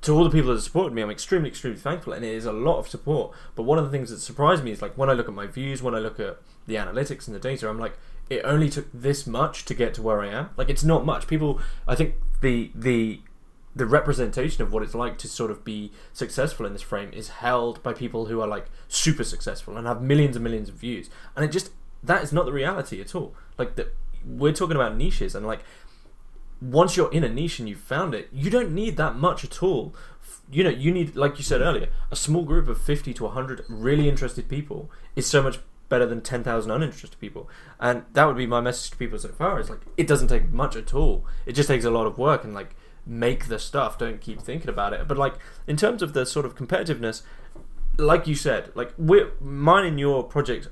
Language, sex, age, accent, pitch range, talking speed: English, male, 10-29, British, 115-150 Hz, 245 wpm